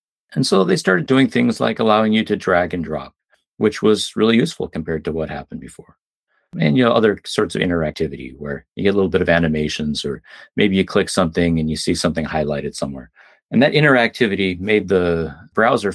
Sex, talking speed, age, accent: male, 205 wpm, 40-59, American